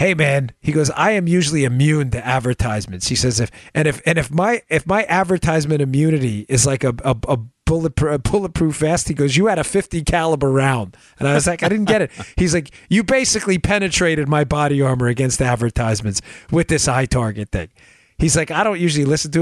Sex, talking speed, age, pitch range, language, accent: male, 215 wpm, 40-59, 110-160 Hz, English, American